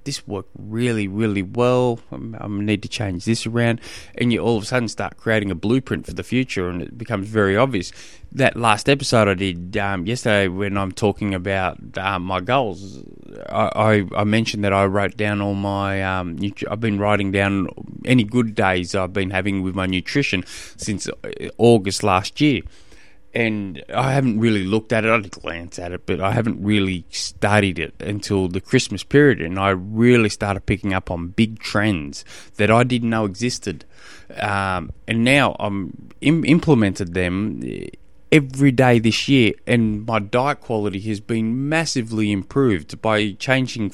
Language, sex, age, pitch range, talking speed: English, male, 20-39, 100-125 Hz, 170 wpm